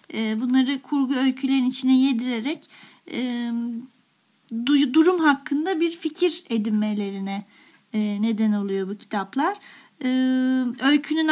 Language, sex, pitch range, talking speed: Turkish, female, 235-295 Hz, 95 wpm